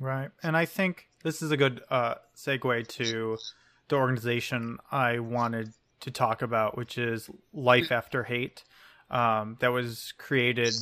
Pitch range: 120-135 Hz